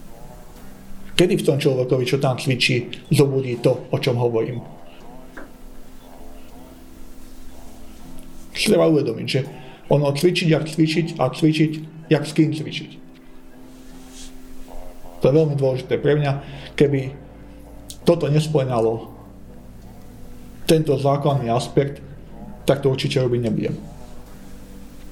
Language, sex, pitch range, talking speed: Slovak, male, 105-145 Hz, 100 wpm